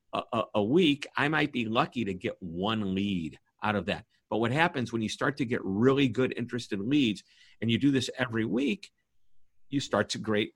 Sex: male